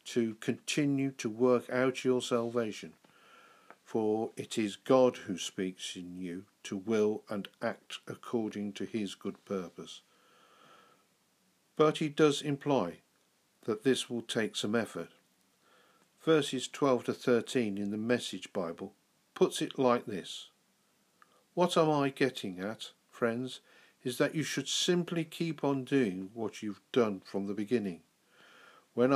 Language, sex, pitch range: English, male, 105-135 Hz